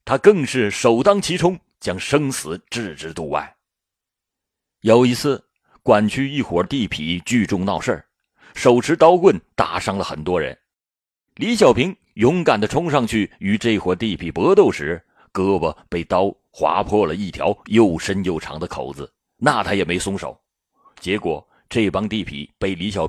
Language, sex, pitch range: Chinese, male, 95-135 Hz